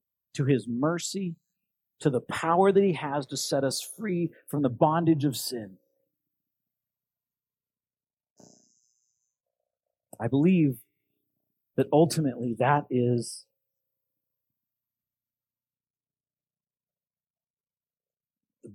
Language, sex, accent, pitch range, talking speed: English, male, American, 115-145 Hz, 80 wpm